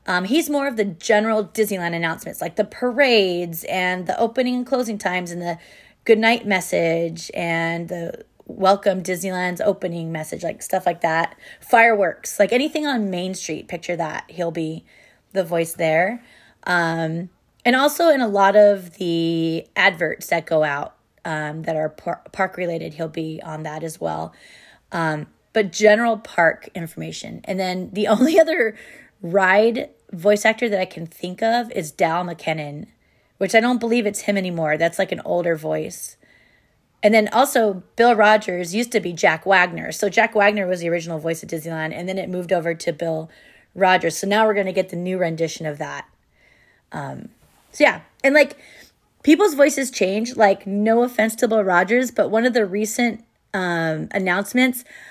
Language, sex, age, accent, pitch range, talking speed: English, female, 20-39, American, 170-220 Hz, 170 wpm